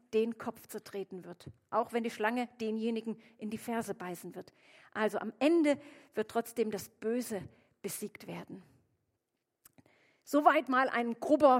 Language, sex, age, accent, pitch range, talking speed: German, female, 40-59, German, 215-275 Hz, 140 wpm